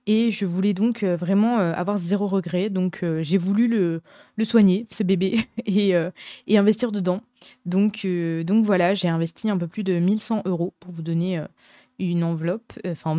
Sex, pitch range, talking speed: female, 175-215 Hz, 185 wpm